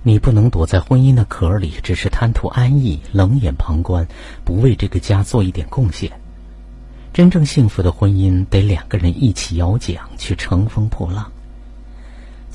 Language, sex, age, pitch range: Chinese, male, 50-69, 85-115 Hz